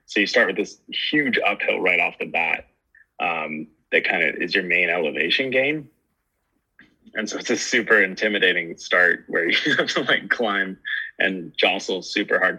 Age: 20-39